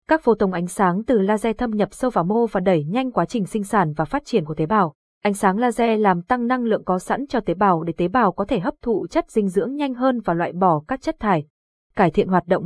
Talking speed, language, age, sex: 275 wpm, Vietnamese, 20-39, female